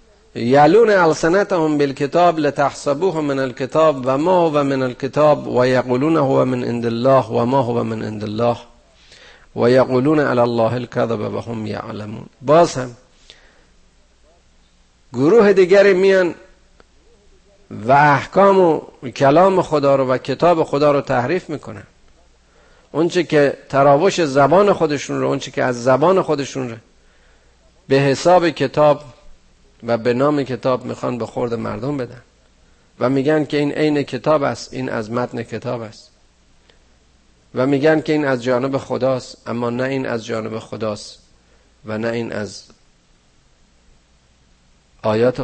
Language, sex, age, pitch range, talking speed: Persian, male, 50-69, 110-145 Hz, 130 wpm